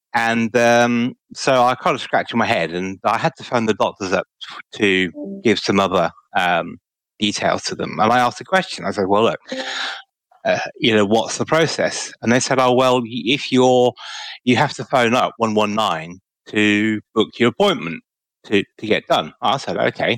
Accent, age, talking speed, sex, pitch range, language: British, 30-49, 190 wpm, male, 105-130 Hz, English